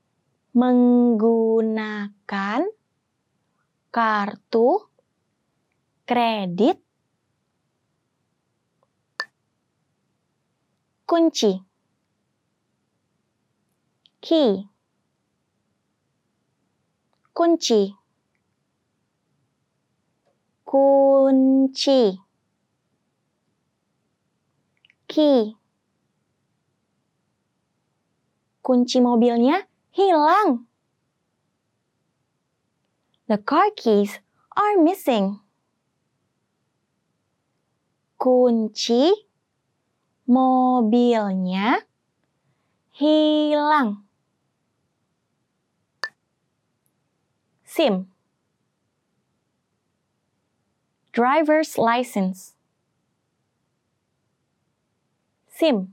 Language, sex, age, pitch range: English, female, 20-39, 215-300 Hz